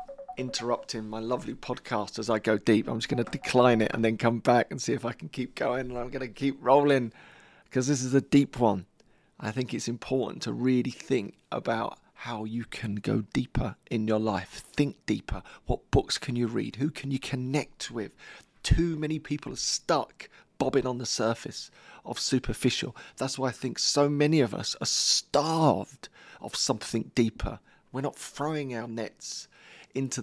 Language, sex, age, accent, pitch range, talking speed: English, male, 40-59, British, 115-145 Hz, 185 wpm